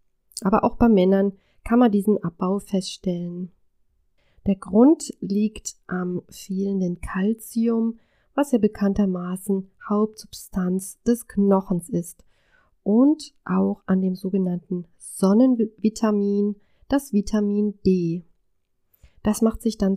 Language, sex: German, female